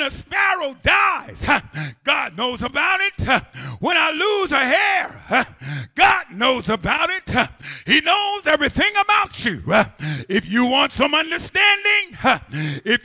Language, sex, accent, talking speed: English, male, American, 125 wpm